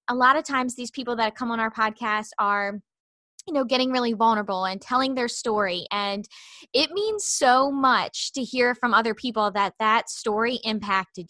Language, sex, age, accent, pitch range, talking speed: English, female, 20-39, American, 220-265 Hz, 185 wpm